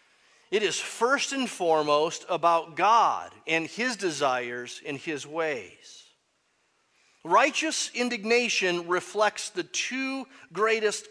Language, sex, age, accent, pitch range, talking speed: English, male, 40-59, American, 160-220 Hz, 105 wpm